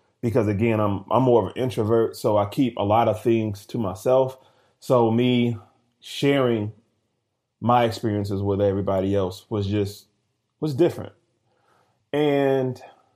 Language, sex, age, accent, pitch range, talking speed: English, male, 30-49, American, 105-125 Hz, 135 wpm